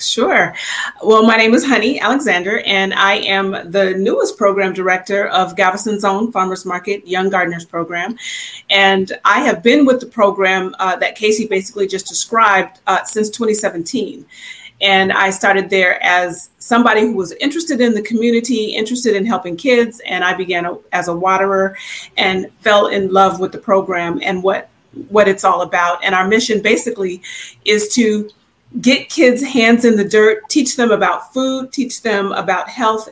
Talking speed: 170 wpm